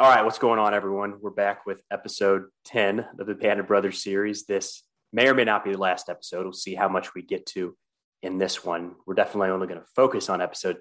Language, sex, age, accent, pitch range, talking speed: English, male, 30-49, American, 90-105 Hz, 240 wpm